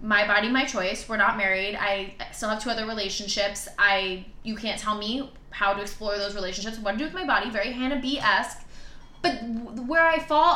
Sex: female